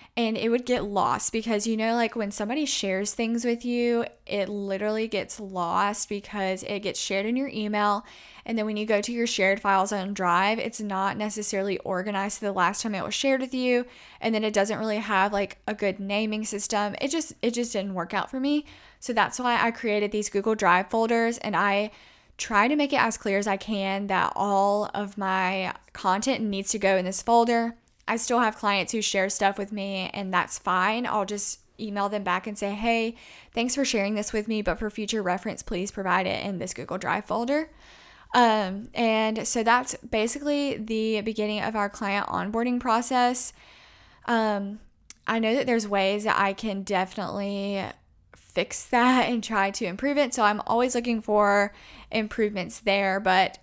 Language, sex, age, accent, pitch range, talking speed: English, female, 10-29, American, 195-230 Hz, 195 wpm